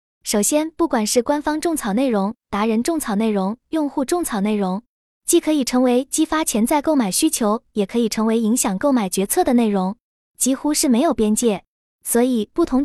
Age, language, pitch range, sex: 20-39, Chinese, 220-290 Hz, female